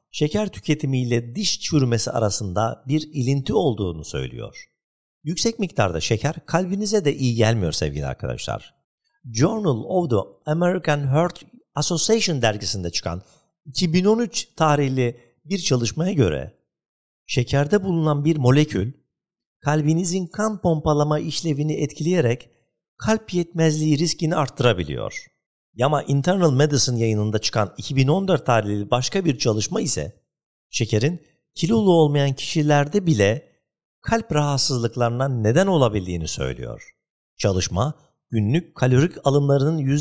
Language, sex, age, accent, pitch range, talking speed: Turkish, male, 50-69, native, 115-165 Hz, 105 wpm